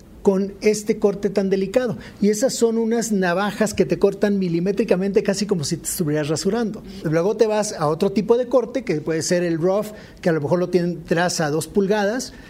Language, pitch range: Spanish, 175-215 Hz